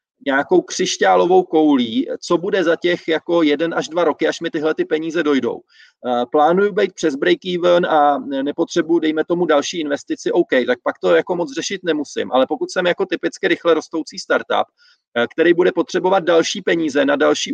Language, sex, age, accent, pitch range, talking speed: Czech, male, 30-49, native, 150-185 Hz, 180 wpm